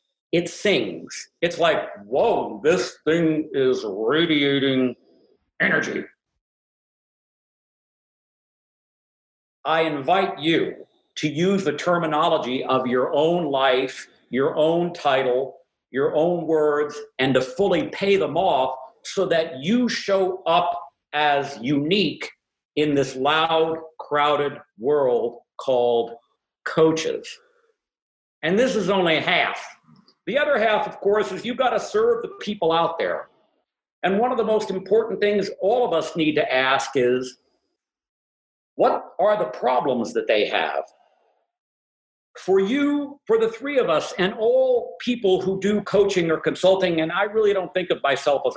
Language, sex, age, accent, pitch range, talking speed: English, male, 50-69, American, 150-235 Hz, 135 wpm